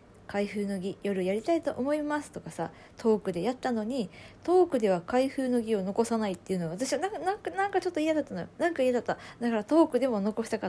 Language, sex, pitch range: Japanese, female, 180-280 Hz